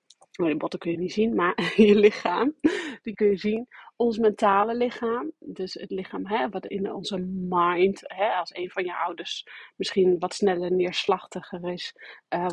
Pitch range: 185-210 Hz